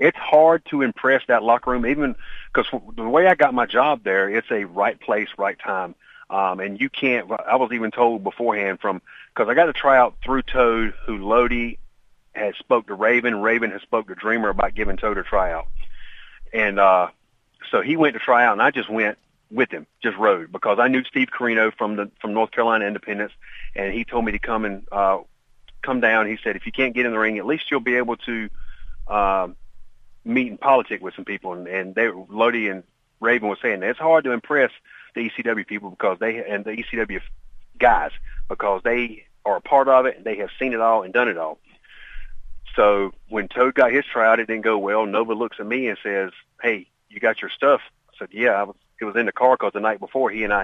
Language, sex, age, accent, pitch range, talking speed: English, male, 40-59, American, 100-120 Hz, 225 wpm